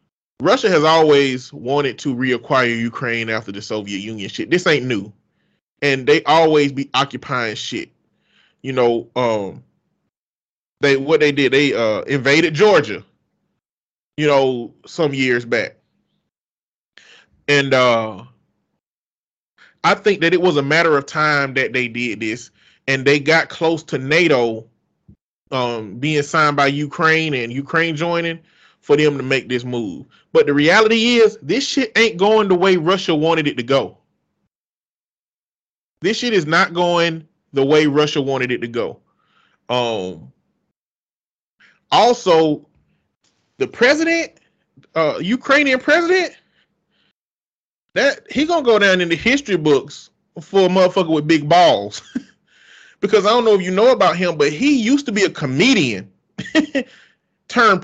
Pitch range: 135-195 Hz